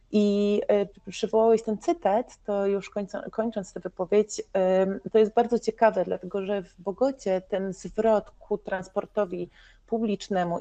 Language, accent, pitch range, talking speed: Polish, native, 180-210 Hz, 140 wpm